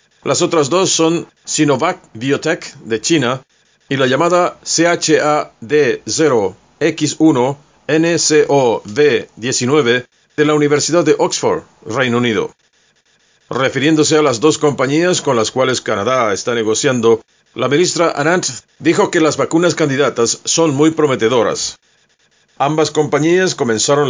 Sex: male